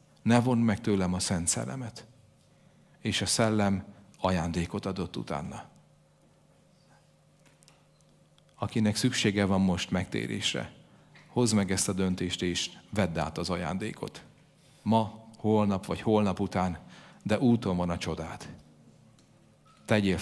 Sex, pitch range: male, 90-110 Hz